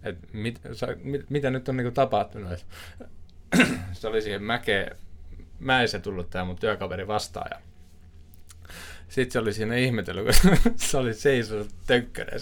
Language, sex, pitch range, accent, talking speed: Finnish, male, 90-125 Hz, native, 140 wpm